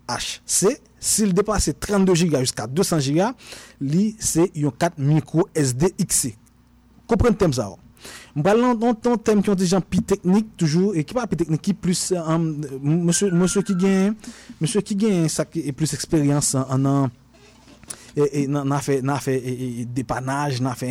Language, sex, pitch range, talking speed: French, male, 145-195 Hz, 165 wpm